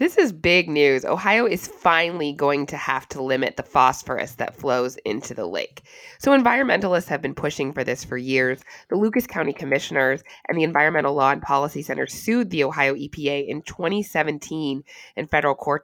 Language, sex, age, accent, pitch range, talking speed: English, female, 20-39, American, 135-195 Hz, 180 wpm